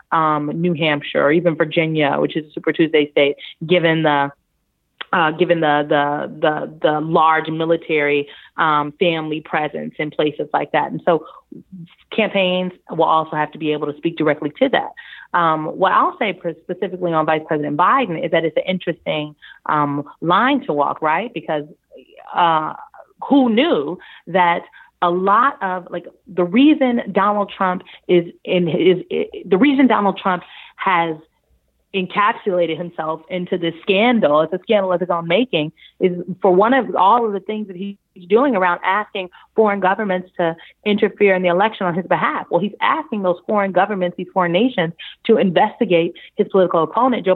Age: 30-49